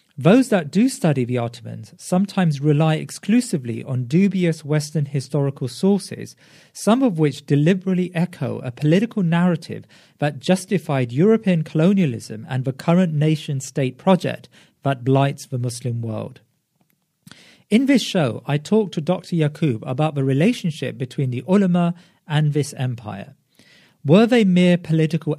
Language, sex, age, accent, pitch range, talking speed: English, male, 40-59, British, 135-185 Hz, 135 wpm